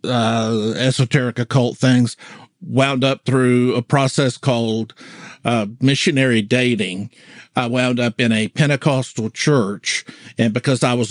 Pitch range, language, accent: 115-135 Hz, English, American